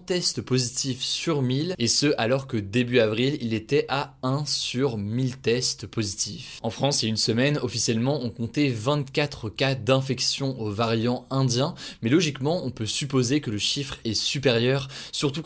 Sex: male